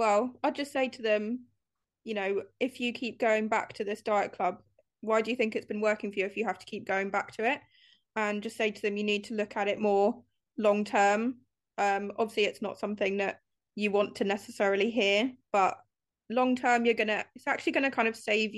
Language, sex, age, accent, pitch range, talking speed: English, female, 20-39, British, 205-235 Hz, 235 wpm